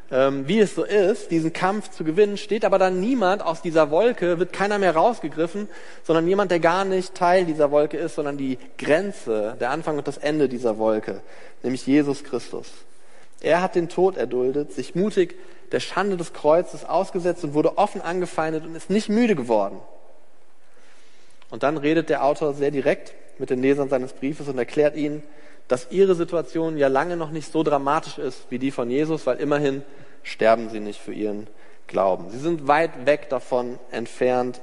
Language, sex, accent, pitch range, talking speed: German, male, German, 130-175 Hz, 180 wpm